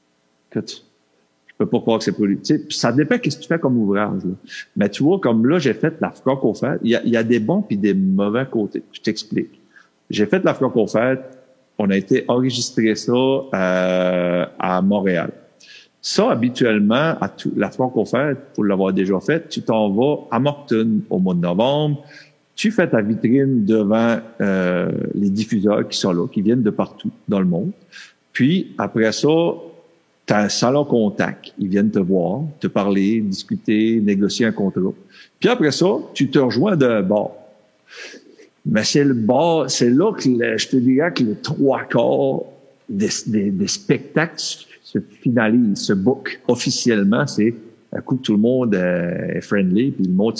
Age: 50-69